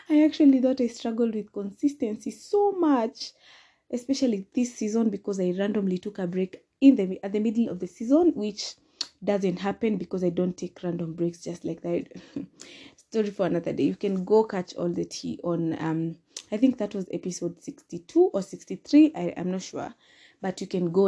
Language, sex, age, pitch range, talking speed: English, female, 20-39, 185-255 Hz, 190 wpm